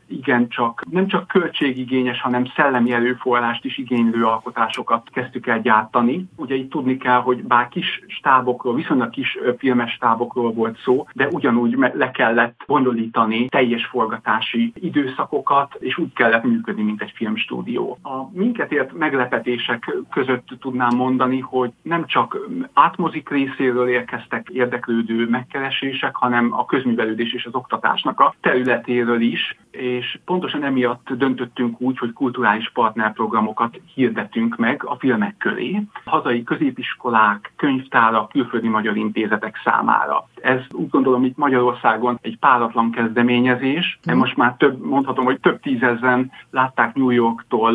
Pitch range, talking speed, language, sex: 120-135 Hz, 135 wpm, Hungarian, male